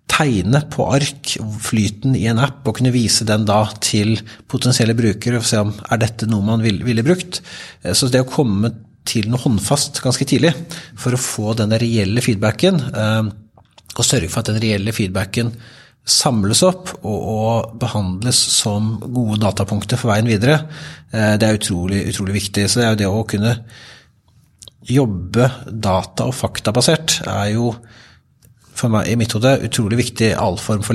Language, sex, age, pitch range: English, male, 30-49, 100-125 Hz